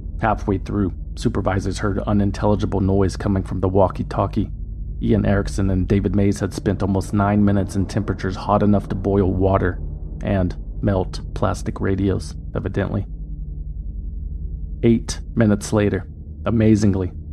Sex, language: male, English